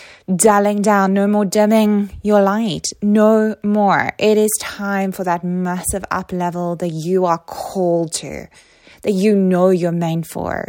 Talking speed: 155 wpm